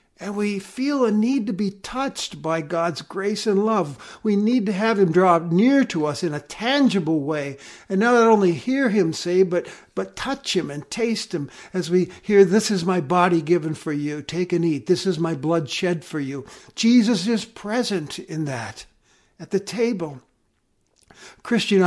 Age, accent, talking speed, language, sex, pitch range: 60-79, American, 185 wpm, English, male, 150-200 Hz